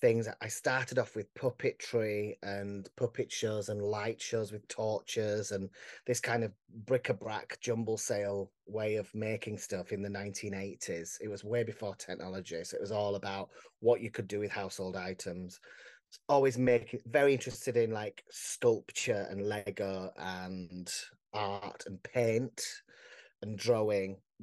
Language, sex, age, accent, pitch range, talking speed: English, male, 30-49, British, 100-115 Hz, 145 wpm